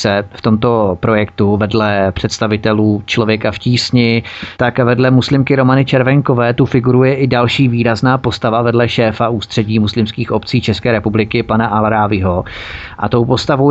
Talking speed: 135 wpm